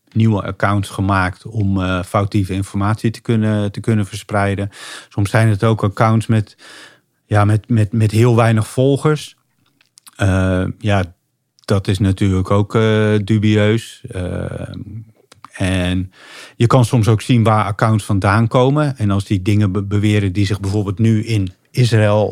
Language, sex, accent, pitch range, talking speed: Dutch, male, Dutch, 100-115 Hz, 150 wpm